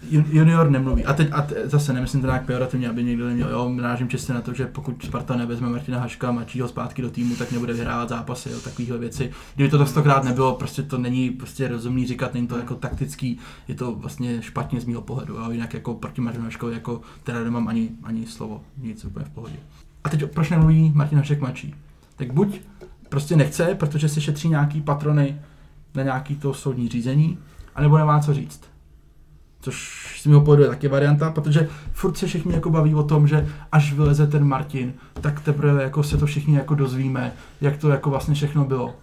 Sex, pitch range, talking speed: male, 120-150 Hz, 200 wpm